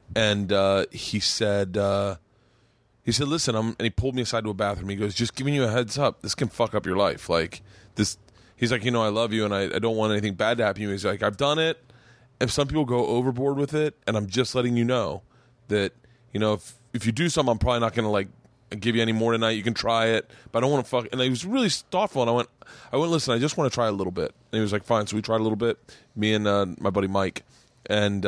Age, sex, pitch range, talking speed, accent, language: 20-39, male, 105-125 Hz, 285 wpm, American, English